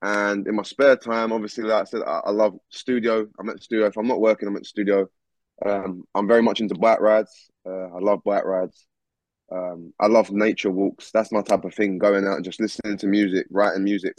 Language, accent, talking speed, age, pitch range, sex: English, British, 235 wpm, 20-39, 100-120 Hz, male